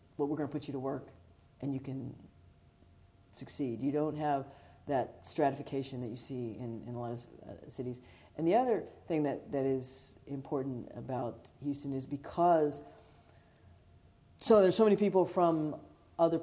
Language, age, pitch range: English, 40-59, 125-155 Hz